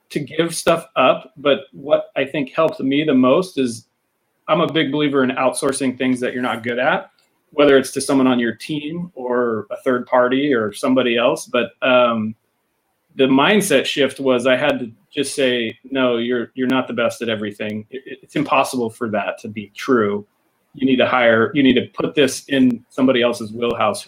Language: English